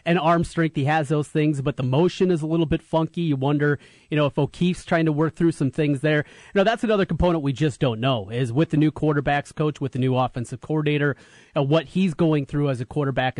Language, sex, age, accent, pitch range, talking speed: English, male, 30-49, American, 140-175 Hz, 250 wpm